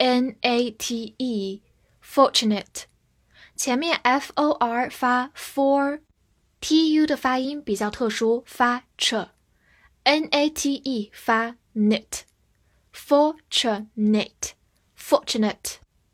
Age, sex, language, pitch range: 10-29, female, Chinese, 215-285 Hz